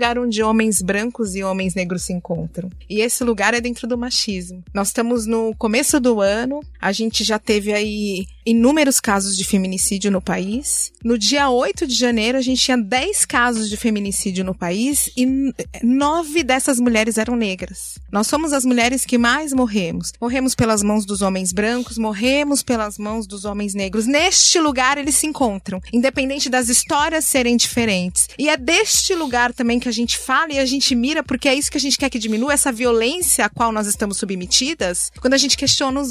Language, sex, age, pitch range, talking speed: Portuguese, female, 20-39, 215-300 Hz, 195 wpm